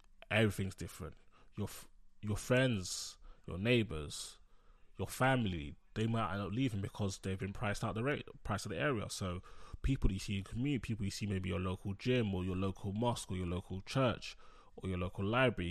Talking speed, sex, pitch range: 195 wpm, male, 95-125 Hz